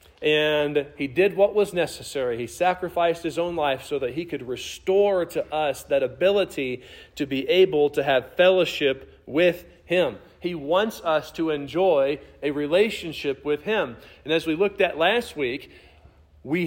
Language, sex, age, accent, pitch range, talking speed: English, male, 40-59, American, 140-200 Hz, 160 wpm